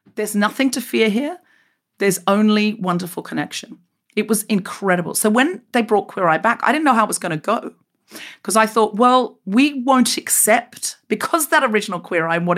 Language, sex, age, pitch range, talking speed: English, female, 40-59, 205-265 Hz, 200 wpm